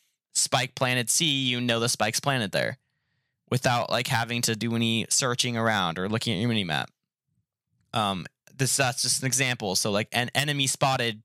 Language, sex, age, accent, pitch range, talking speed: English, male, 20-39, American, 120-145 Hz, 180 wpm